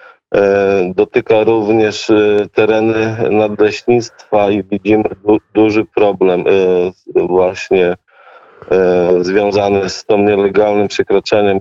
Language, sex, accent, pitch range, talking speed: Polish, male, native, 100-115 Hz, 70 wpm